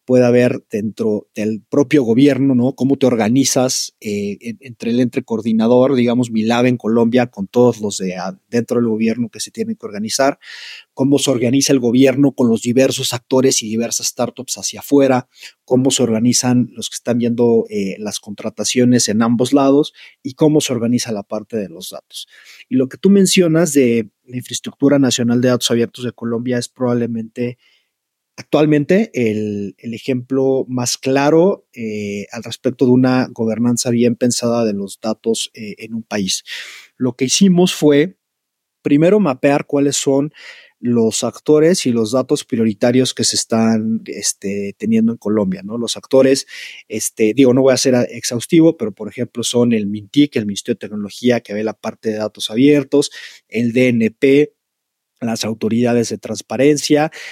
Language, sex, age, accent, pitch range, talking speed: Spanish, male, 30-49, Mexican, 115-135 Hz, 165 wpm